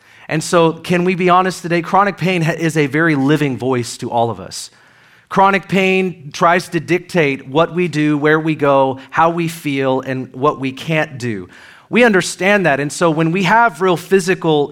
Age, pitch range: 40-59, 150-185 Hz